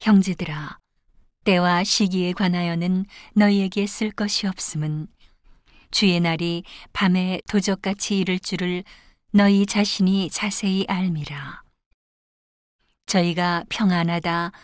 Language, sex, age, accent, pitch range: Korean, female, 40-59, native, 165-195 Hz